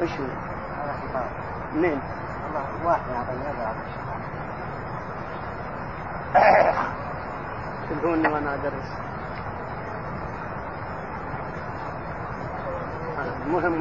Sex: male